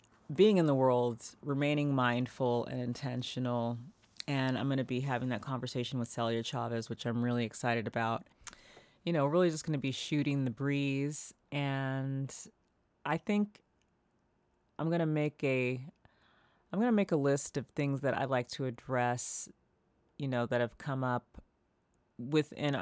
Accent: American